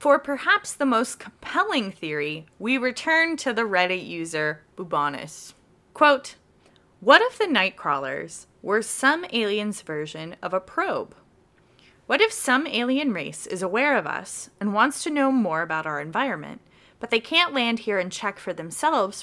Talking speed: 160 wpm